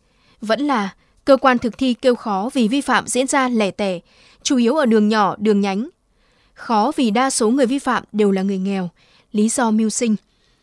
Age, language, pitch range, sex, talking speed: 20-39, Vietnamese, 215-265 Hz, female, 210 wpm